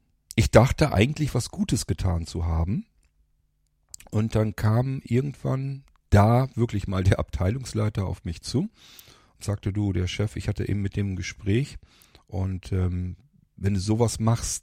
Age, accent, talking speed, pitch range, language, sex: 40-59, German, 155 wpm, 90-105 Hz, German, male